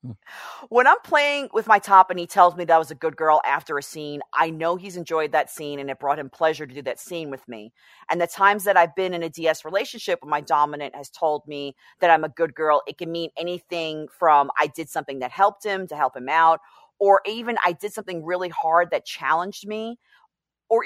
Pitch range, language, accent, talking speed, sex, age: 150-205 Hz, English, American, 235 wpm, female, 30-49